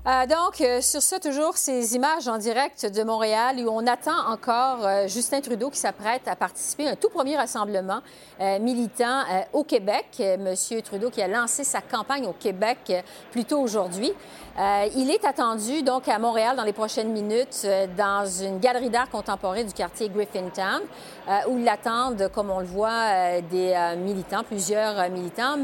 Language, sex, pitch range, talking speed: French, female, 190-245 Hz, 175 wpm